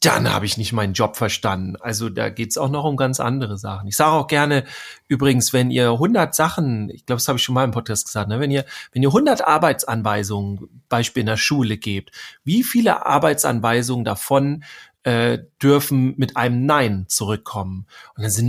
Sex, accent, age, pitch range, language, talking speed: male, German, 40-59, 115-150 Hz, German, 195 wpm